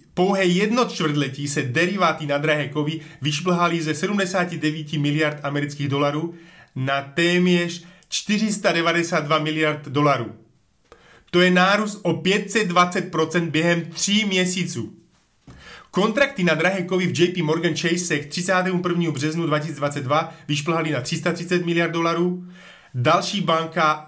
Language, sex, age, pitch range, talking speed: Slovak, male, 30-49, 150-180 Hz, 115 wpm